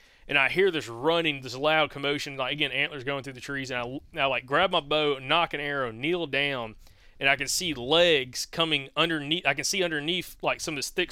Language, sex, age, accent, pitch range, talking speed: English, male, 20-39, American, 130-160 Hz, 230 wpm